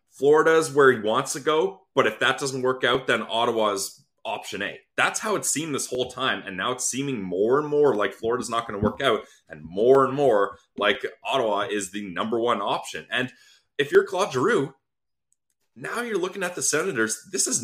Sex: male